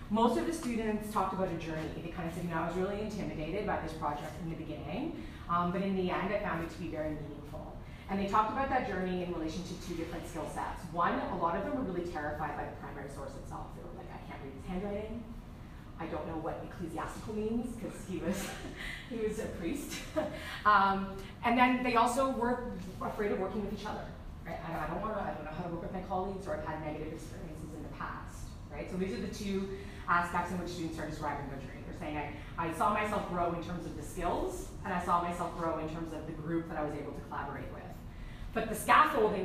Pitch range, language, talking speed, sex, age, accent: 160-200 Hz, English, 250 wpm, female, 30-49, American